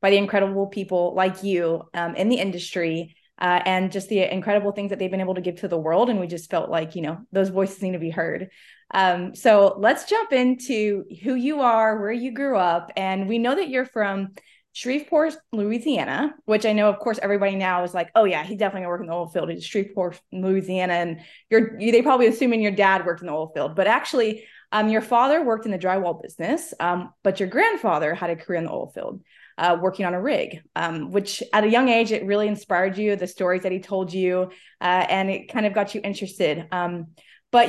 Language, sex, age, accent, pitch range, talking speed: English, female, 20-39, American, 185-225 Hz, 225 wpm